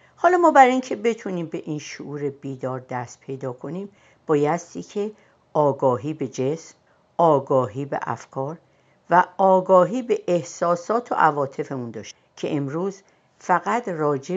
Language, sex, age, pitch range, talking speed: Persian, female, 60-79, 135-195 Hz, 130 wpm